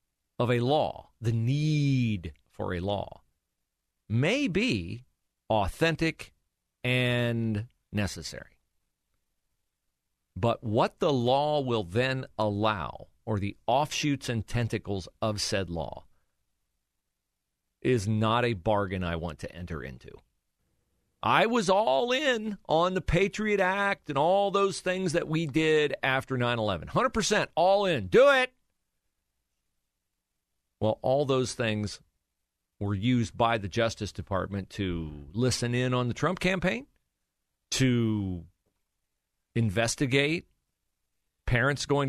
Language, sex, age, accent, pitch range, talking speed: English, male, 40-59, American, 90-140 Hz, 115 wpm